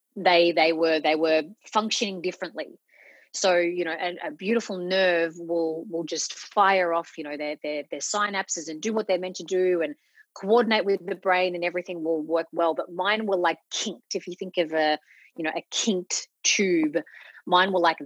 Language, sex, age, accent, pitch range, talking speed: English, female, 30-49, Australian, 160-195 Hz, 200 wpm